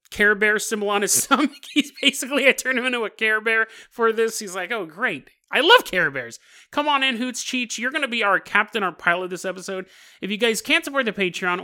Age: 30-49